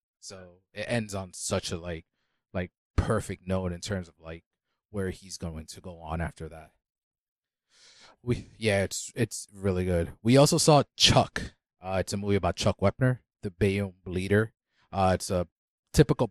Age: 30-49